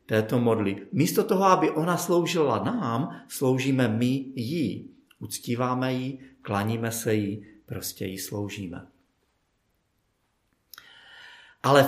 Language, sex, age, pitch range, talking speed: Czech, male, 50-69, 105-135 Hz, 100 wpm